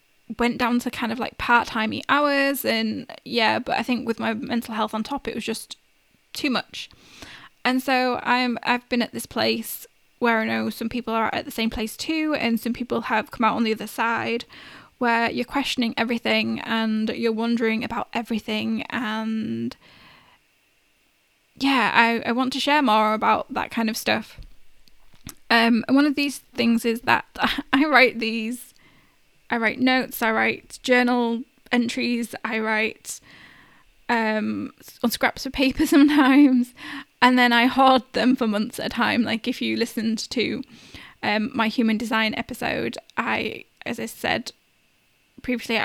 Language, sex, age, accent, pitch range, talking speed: English, female, 10-29, British, 225-255 Hz, 165 wpm